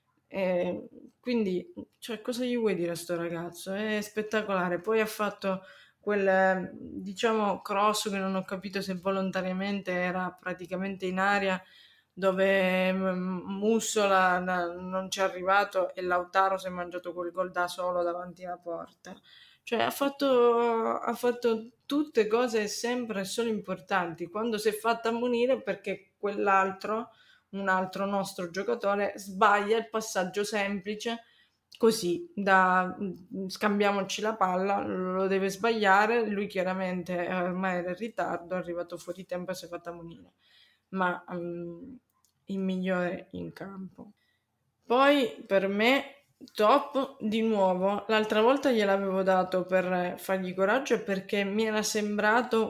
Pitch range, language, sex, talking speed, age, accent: 185-220 Hz, Italian, female, 135 wpm, 20-39, native